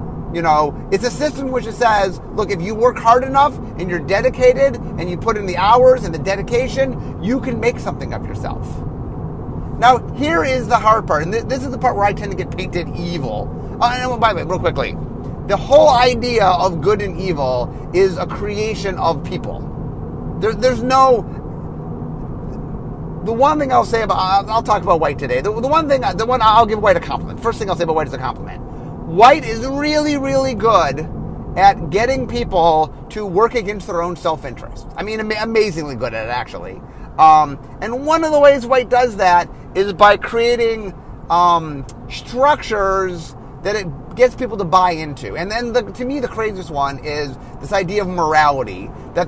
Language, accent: English, American